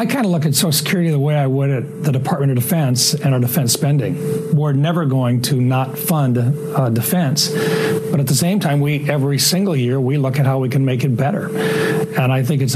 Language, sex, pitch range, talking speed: English, male, 130-155 Hz, 235 wpm